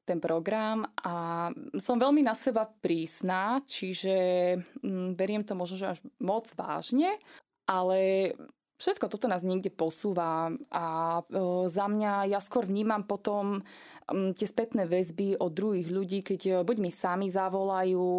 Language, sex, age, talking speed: Slovak, female, 20-39, 130 wpm